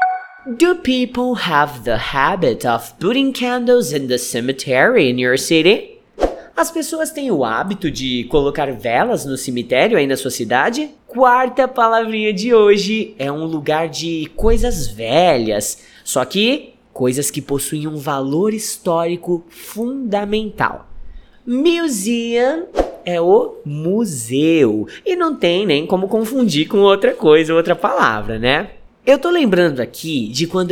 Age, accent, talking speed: 20-39, Brazilian, 135 wpm